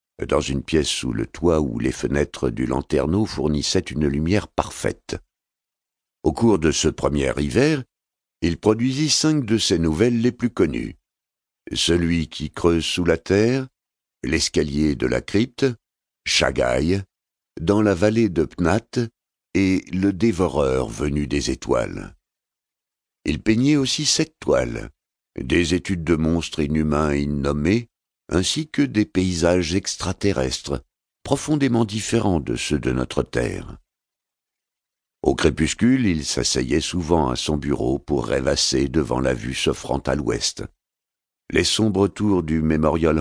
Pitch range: 75-110 Hz